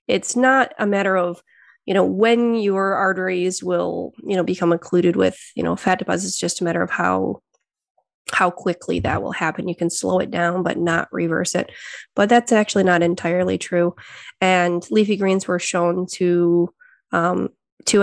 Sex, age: female, 20-39